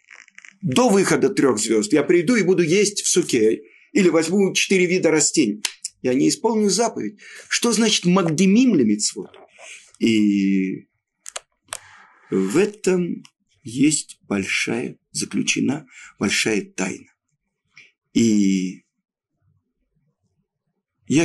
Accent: native